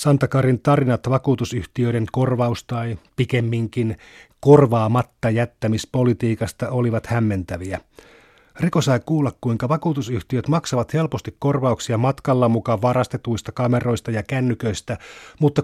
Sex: male